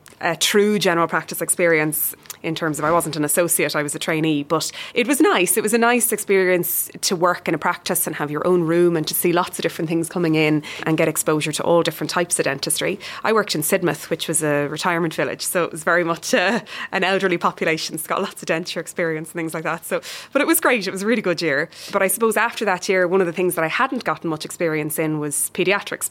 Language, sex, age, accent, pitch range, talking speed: English, female, 20-39, Irish, 160-185 Hz, 255 wpm